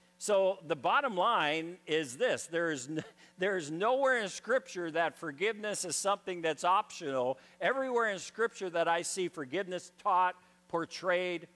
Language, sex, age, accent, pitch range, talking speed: English, male, 50-69, American, 125-180 Hz, 140 wpm